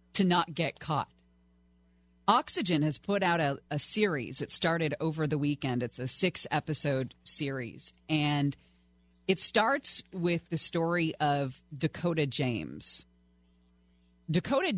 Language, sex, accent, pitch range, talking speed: English, female, American, 125-175 Hz, 125 wpm